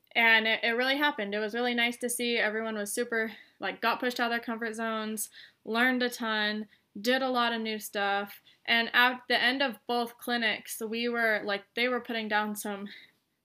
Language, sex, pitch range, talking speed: English, female, 200-235 Hz, 205 wpm